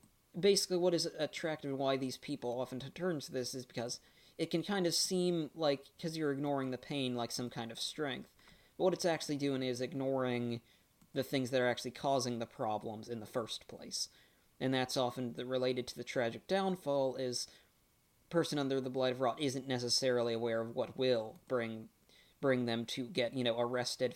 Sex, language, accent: male, English, American